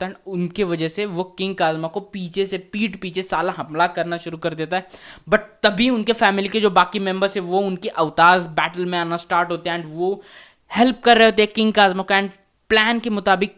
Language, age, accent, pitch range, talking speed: Hindi, 20-39, native, 175-200 Hz, 60 wpm